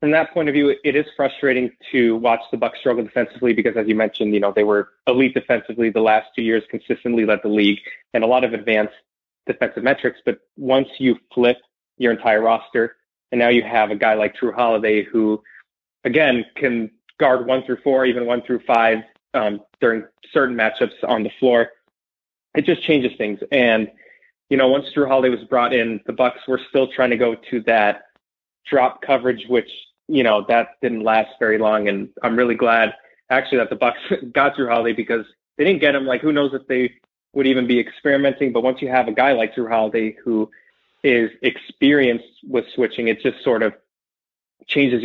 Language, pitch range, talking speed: English, 110-130 Hz, 200 wpm